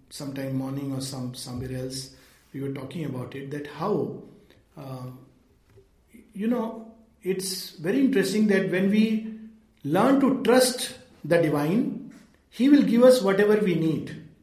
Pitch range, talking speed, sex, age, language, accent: 175-245 Hz, 140 wpm, male, 50-69, English, Indian